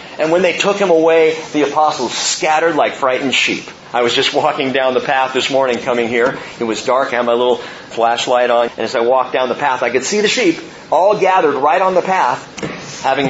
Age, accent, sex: 40-59, American, male